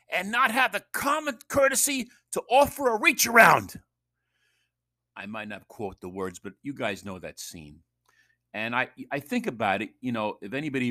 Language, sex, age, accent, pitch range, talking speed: English, male, 50-69, American, 85-120 Hz, 180 wpm